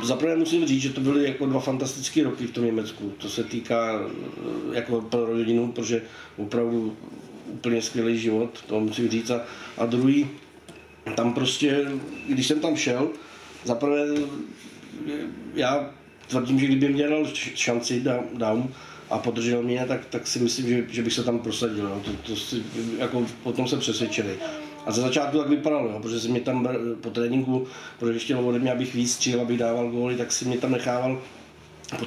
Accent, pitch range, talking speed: native, 115-125 Hz, 180 wpm